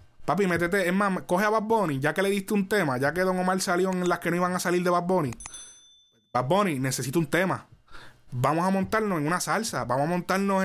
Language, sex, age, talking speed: Spanish, male, 20-39, 240 wpm